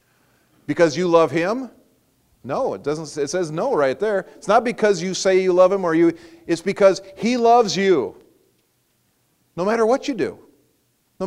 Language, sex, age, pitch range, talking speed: English, male, 40-59, 160-215 Hz, 175 wpm